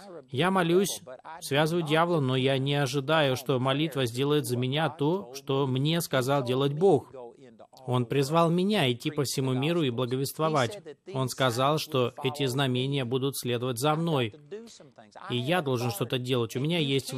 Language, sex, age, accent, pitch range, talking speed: Russian, male, 20-39, native, 125-150 Hz, 155 wpm